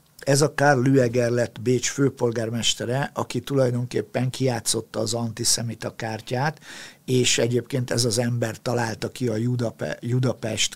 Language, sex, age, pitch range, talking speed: Hungarian, male, 50-69, 110-130 Hz, 125 wpm